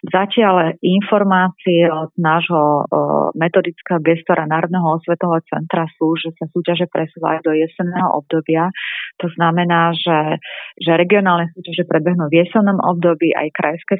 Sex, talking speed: female, 125 wpm